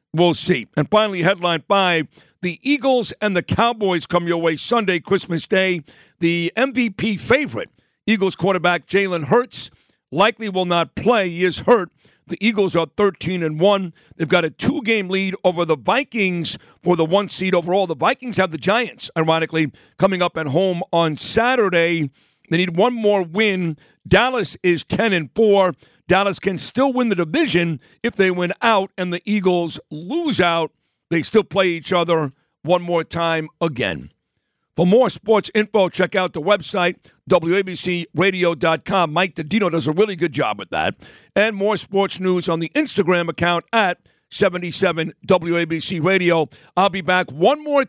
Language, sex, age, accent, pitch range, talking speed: English, male, 50-69, American, 170-205 Hz, 160 wpm